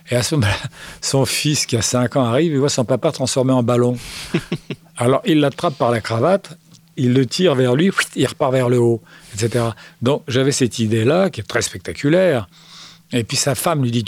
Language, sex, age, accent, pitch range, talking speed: French, male, 50-69, French, 115-155 Hz, 210 wpm